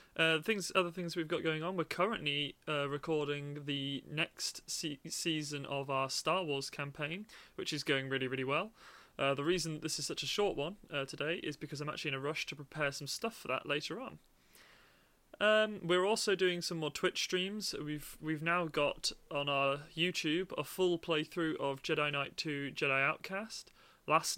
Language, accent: English, British